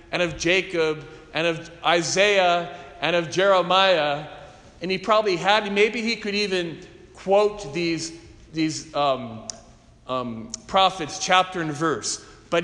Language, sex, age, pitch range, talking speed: English, male, 40-59, 155-195 Hz, 130 wpm